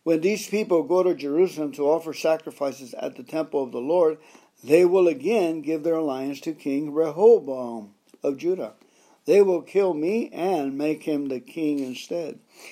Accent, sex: American, male